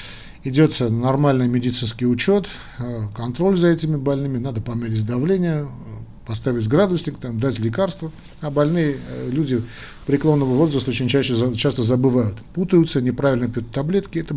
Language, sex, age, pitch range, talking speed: Russian, male, 50-69, 120-145 Hz, 115 wpm